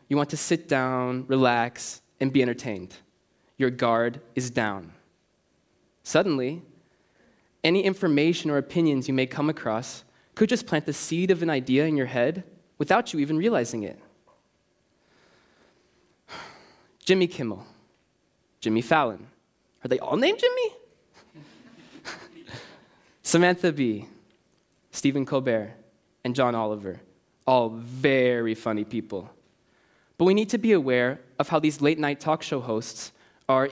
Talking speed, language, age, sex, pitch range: 130 wpm, English, 20-39, male, 120-165 Hz